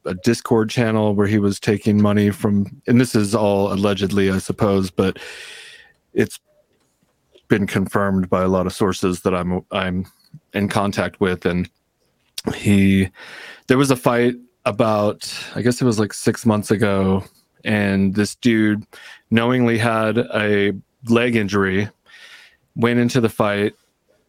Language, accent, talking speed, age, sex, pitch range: English, American, 145 wpm, 30-49, male, 100-120 Hz